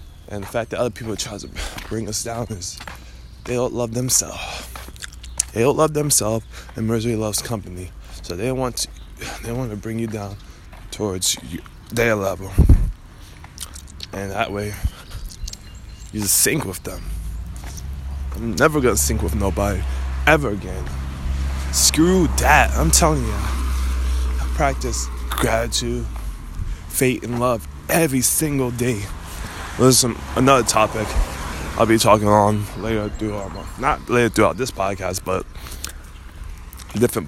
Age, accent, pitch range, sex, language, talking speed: 20-39, American, 75-110 Hz, male, English, 145 wpm